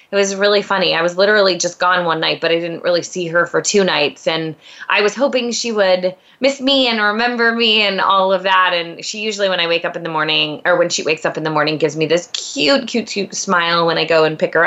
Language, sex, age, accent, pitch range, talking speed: English, female, 20-39, American, 160-210 Hz, 270 wpm